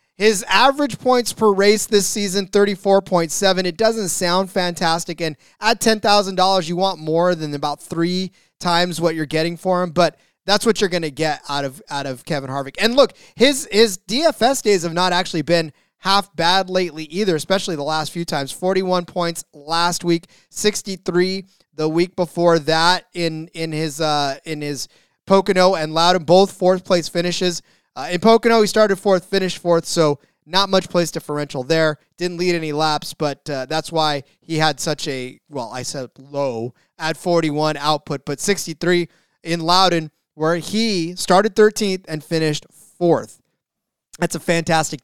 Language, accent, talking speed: English, American, 175 wpm